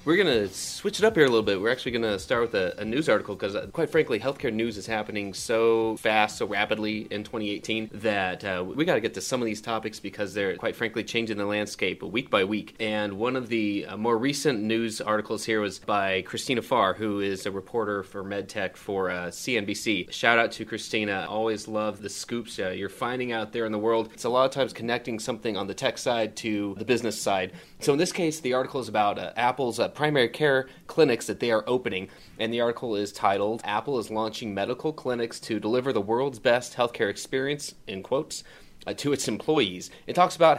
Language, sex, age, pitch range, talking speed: English, male, 30-49, 105-130 Hz, 225 wpm